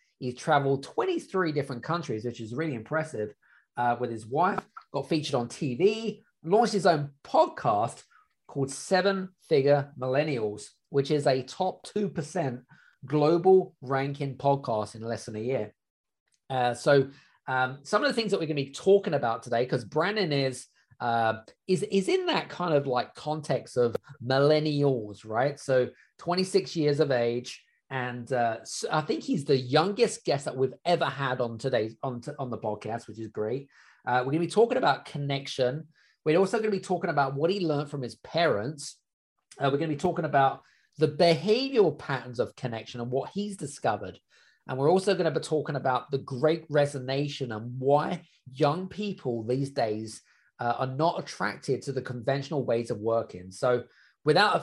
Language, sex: English, male